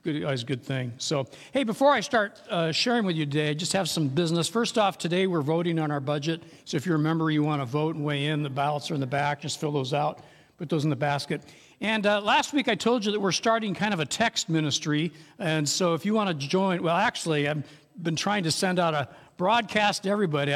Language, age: English, 60-79